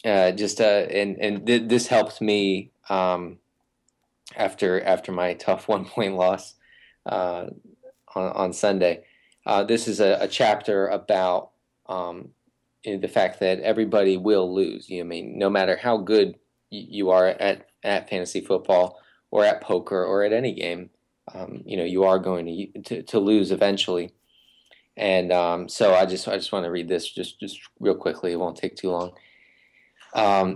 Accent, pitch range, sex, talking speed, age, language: American, 90-110 Hz, male, 175 wpm, 20-39, English